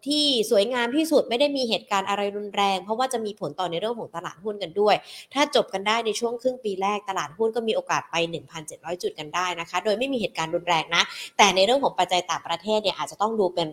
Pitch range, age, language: 190-255 Hz, 20-39, Thai